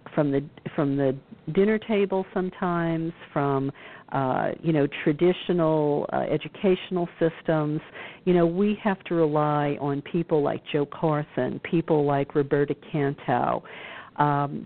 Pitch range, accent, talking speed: 140-175 Hz, American, 125 wpm